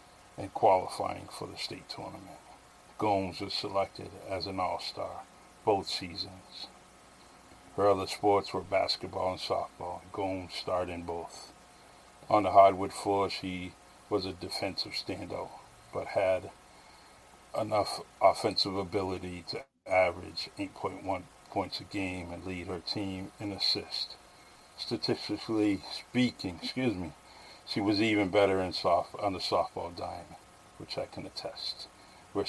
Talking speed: 130 wpm